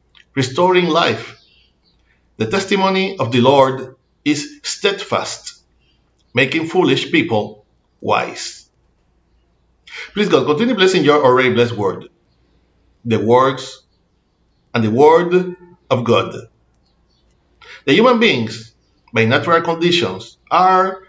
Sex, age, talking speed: male, 60-79, 100 wpm